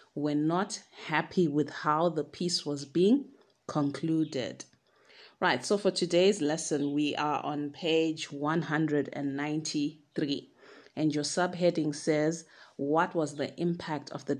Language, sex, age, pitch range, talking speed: English, female, 30-49, 150-175 Hz, 125 wpm